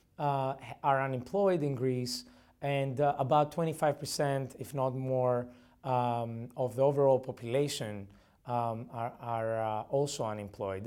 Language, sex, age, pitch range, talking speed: English, male, 30-49, 120-150 Hz, 125 wpm